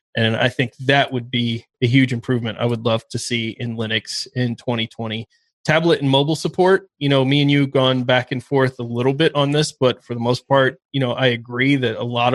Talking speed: 240 wpm